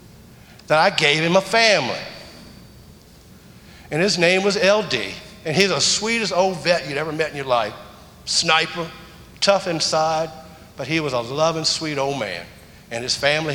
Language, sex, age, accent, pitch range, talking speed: English, male, 50-69, American, 140-185 Hz, 165 wpm